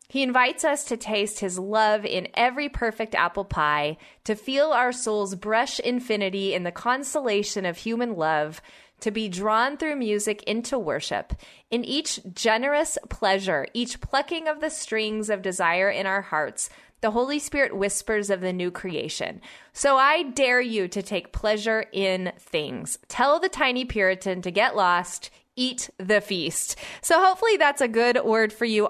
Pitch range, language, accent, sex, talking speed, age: 195-250 Hz, English, American, female, 165 wpm, 20-39